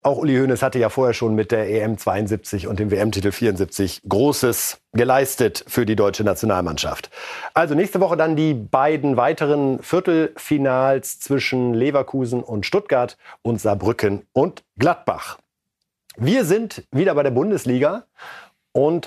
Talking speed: 140 wpm